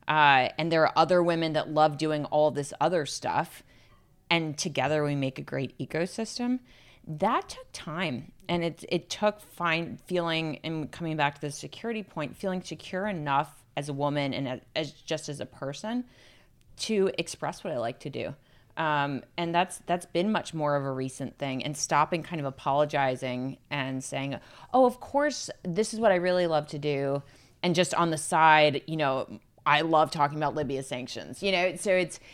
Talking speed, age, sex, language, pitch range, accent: 190 wpm, 30-49, female, English, 140-175 Hz, American